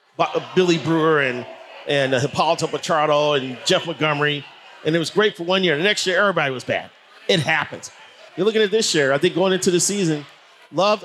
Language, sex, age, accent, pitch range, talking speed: English, male, 40-59, American, 140-180 Hz, 195 wpm